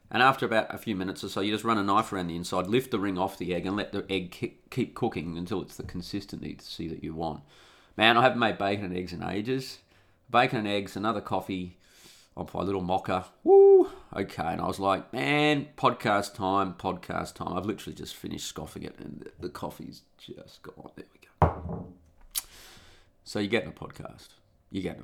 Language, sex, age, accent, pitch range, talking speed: English, male, 30-49, Australian, 90-110 Hz, 210 wpm